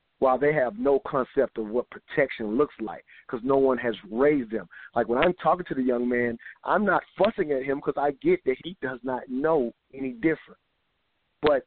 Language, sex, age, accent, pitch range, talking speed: English, male, 40-59, American, 115-140 Hz, 205 wpm